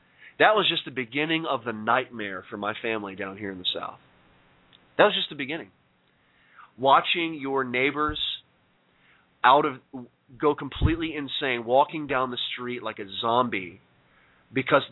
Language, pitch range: English, 110-140 Hz